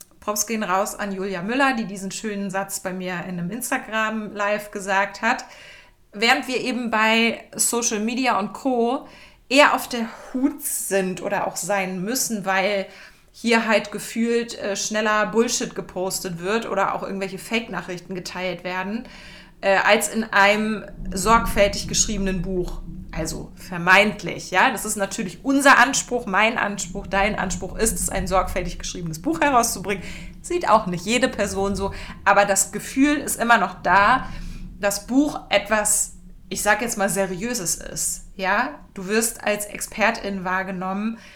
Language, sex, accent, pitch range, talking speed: German, female, German, 190-230 Hz, 145 wpm